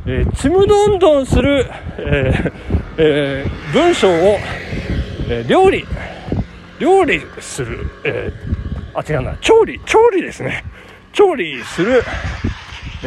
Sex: male